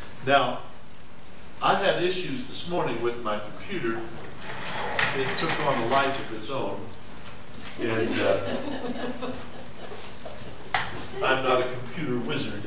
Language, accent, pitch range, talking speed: English, American, 115-155 Hz, 115 wpm